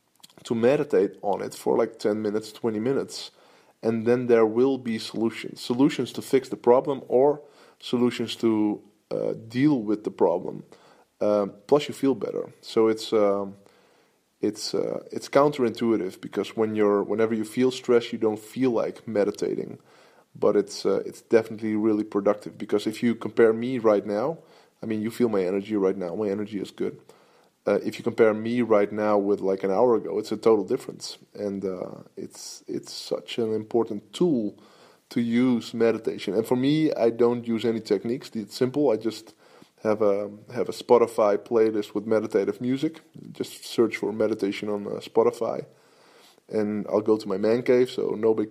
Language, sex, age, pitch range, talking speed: English, male, 20-39, 105-125 Hz, 175 wpm